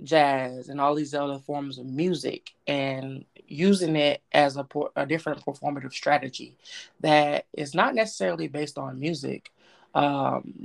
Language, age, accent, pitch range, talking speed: English, 20-39, American, 135-150 Hz, 140 wpm